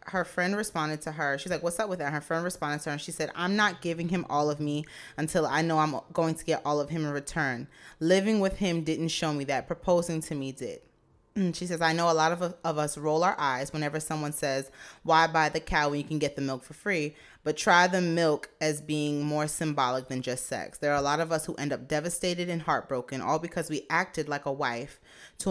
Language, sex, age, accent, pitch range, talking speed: English, female, 20-39, American, 145-170 Hz, 255 wpm